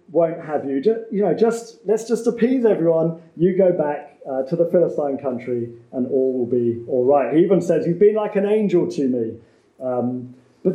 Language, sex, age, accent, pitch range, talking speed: English, male, 30-49, British, 125-175 Hz, 205 wpm